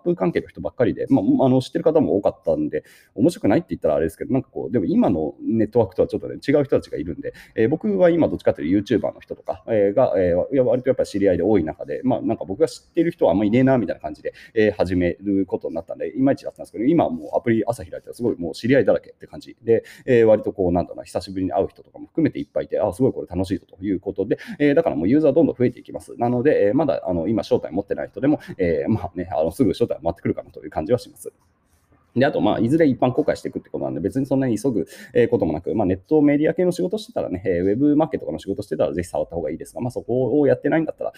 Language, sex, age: Japanese, male, 30-49